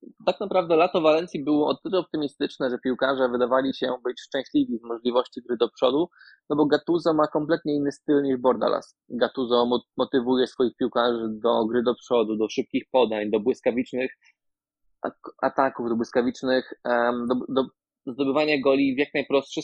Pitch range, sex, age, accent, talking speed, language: 120-140 Hz, male, 20-39, native, 155 wpm, Polish